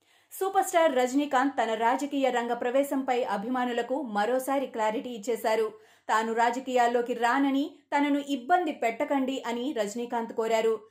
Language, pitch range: Telugu, 230-280 Hz